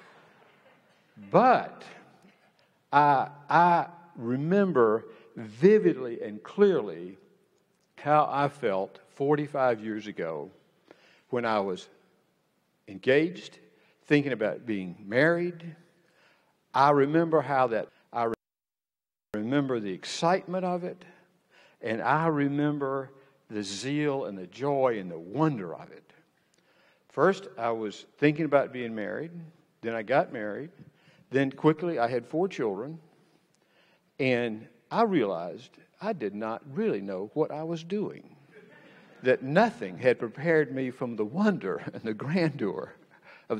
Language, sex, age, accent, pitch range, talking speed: English, male, 60-79, American, 130-175 Hz, 115 wpm